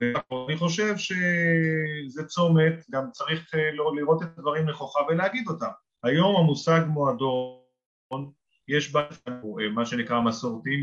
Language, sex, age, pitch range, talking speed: Hebrew, male, 30-49, 135-180 Hz, 110 wpm